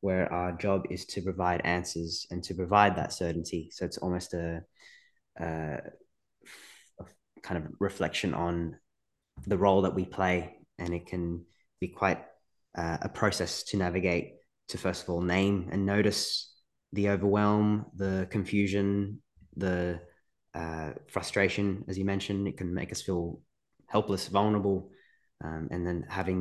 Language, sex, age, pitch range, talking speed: English, male, 20-39, 90-100 Hz, 150 wpm